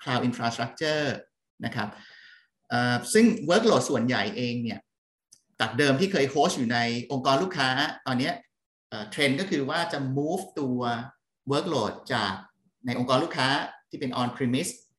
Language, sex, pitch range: Thai, male, 120-155 Hz